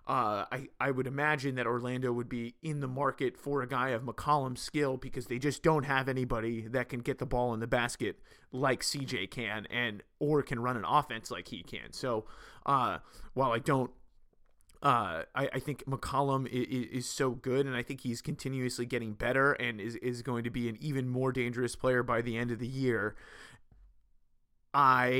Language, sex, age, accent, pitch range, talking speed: English, male, 30-49, American, 120-135 Hz, 200 wpm